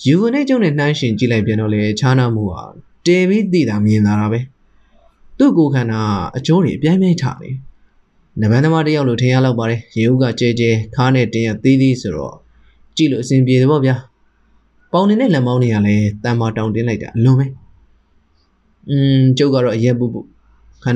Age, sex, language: 20-39, male, English